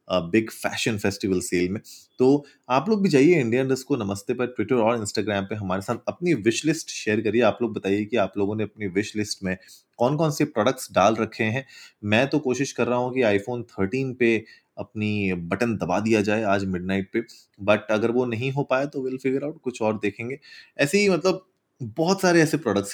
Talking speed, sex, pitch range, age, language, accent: 210 wpm, male, 100-130 Hz, 30-49, Hindi, native